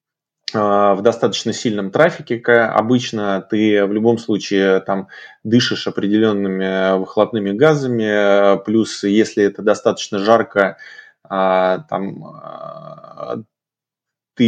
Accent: native